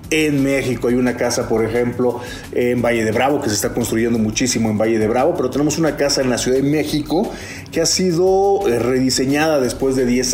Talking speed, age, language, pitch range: 210 wpm, 40-59, Spanish, 115-130 Hz